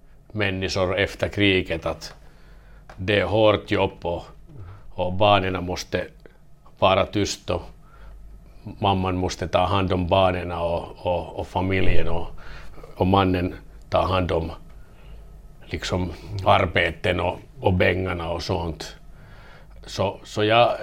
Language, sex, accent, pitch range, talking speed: Swedish, male, Finnish, 90-105 Hz, 115 wpm